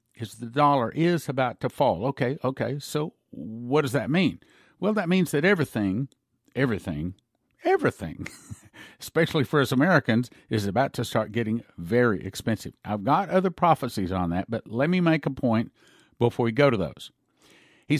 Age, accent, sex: 50-69, American, male